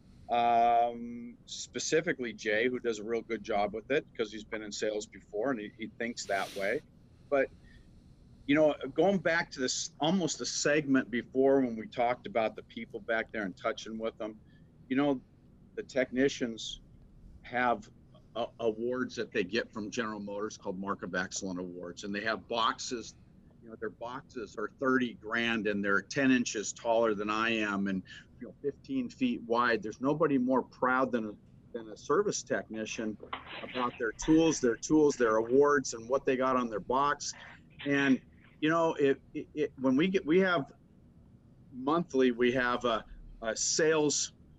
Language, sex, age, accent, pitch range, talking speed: English, male, 50-69, American, 115-150 Hz, 170 wpm